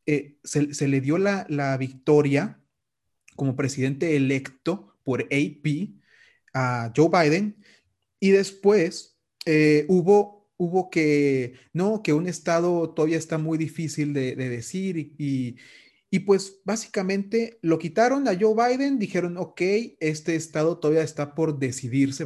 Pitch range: 135-170 Hz